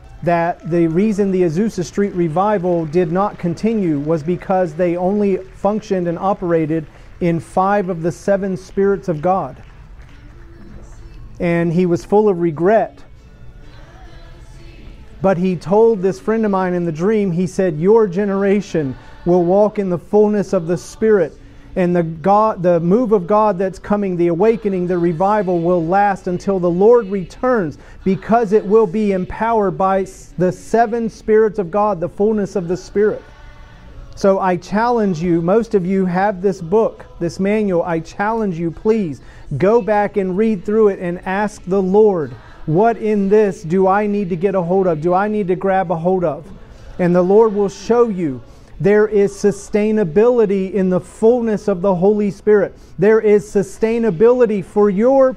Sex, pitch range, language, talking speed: male, 175-210 Hz, English, 165 wpm